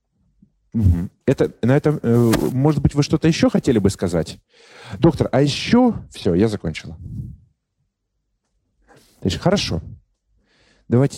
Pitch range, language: 100-135 Hz, Russian